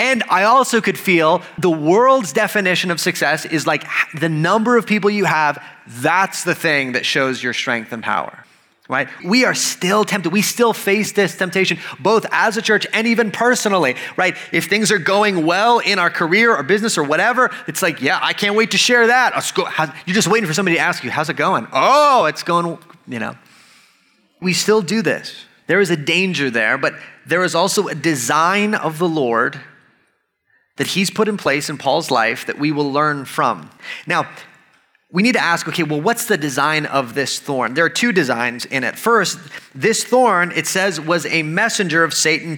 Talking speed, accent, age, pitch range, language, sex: 205 wpm, American, 30-49, 155-210 Hz, English, male